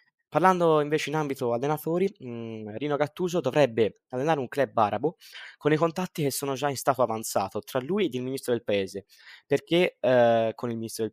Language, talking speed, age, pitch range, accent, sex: Italian, 185 wpm, 20-39, 110-140 Hz, native, male